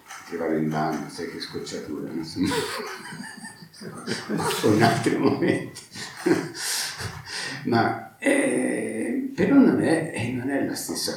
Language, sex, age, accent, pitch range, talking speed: Italian, male, 60-79, native, 85-110 Hz, 125 wpm